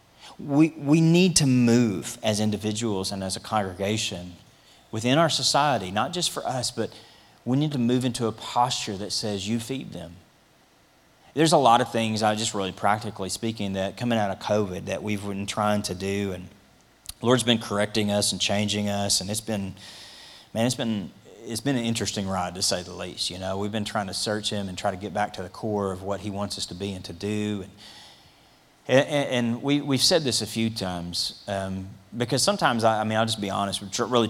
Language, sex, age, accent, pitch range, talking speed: English, male, 30-49, American, 100-130 Hz, 210 wpm